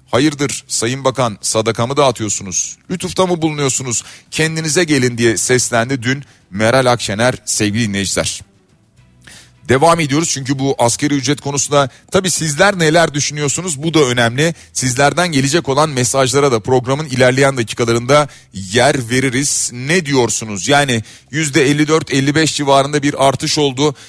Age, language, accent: 40-59, Turkish, native